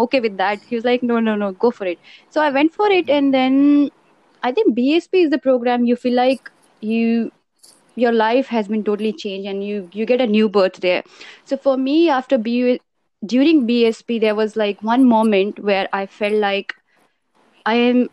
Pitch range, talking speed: 200-245 Hz, 195 wpm